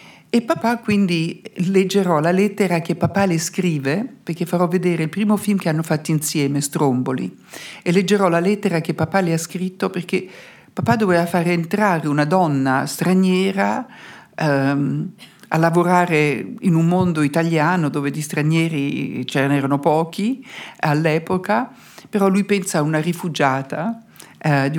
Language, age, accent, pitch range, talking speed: Italian, 60-79, native, 150-200 Hz, 145 wpm